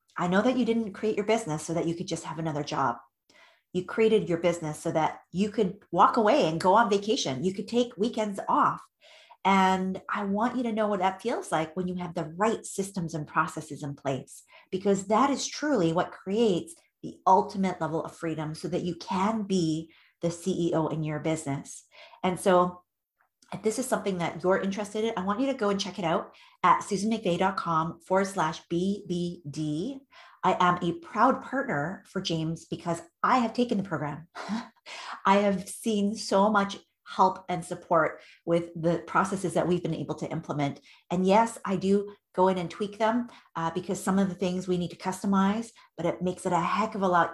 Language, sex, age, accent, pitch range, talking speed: English, female, 30-49, American, 165-205 Hz, 200 wpm